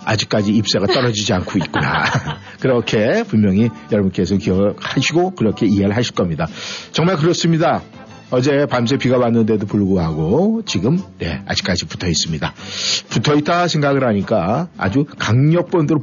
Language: Korean